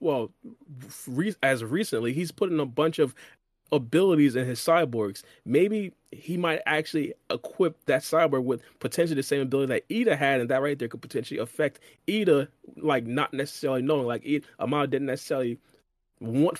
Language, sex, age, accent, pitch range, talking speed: English, male, 20-39, American, 125-155 Hz, 165 wpm